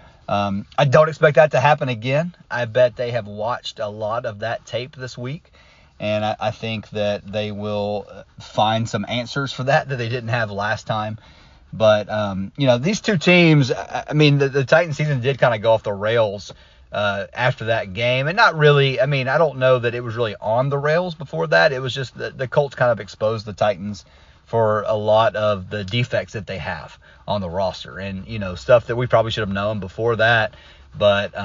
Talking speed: 220 wpm